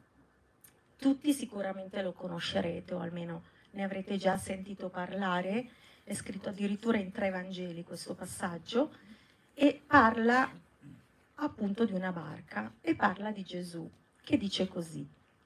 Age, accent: 40-59, native